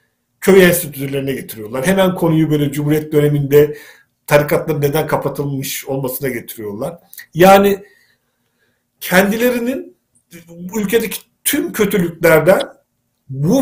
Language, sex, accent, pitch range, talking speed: Turkish, male, native, 145-190 Hz, 85 wpm